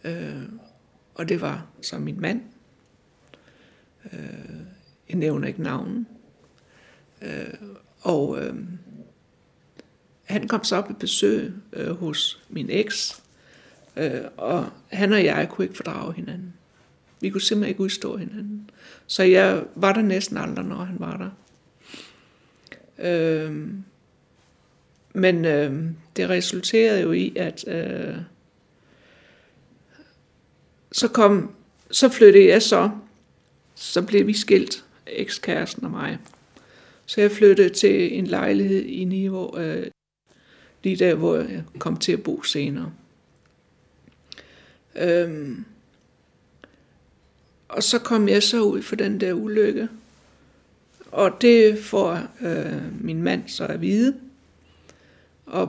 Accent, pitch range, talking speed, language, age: native, 175-220 Hz, 120 wpm, Danish, 60-79